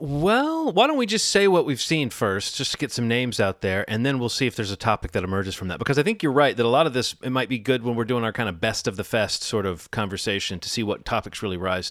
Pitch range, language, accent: 100-130 Hz, English, American